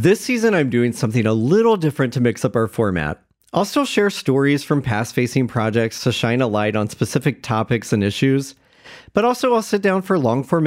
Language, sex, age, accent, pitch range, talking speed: English, male, 40-59, American, 115-160 Hz, 200 wpm